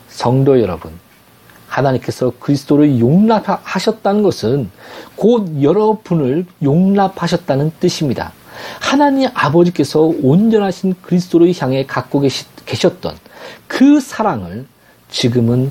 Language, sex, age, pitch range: Korean, male, 40-59, 115-180 Hz